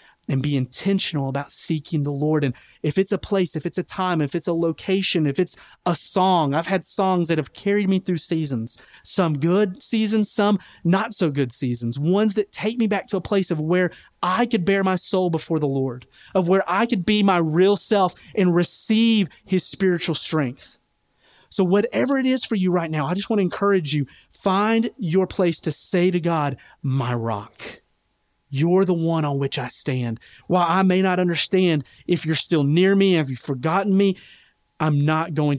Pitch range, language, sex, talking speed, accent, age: 140-190 Hz, English, male, 200 wpm, American, 30-49